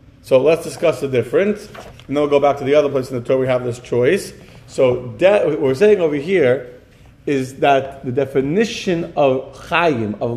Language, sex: English, male